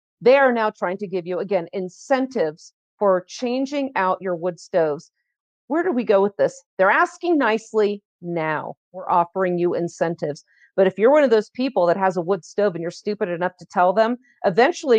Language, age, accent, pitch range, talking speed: English, 40-59, American, 180-245 Hz, 195 wpm